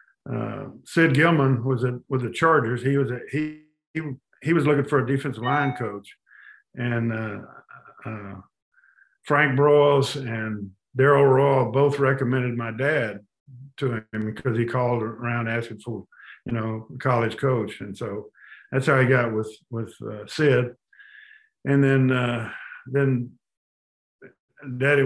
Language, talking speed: English, 145 wpm